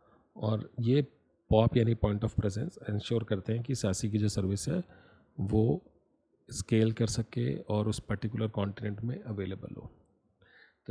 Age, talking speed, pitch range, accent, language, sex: 40-59, 155 wpm, 105-120 Hz, native, Hindi, male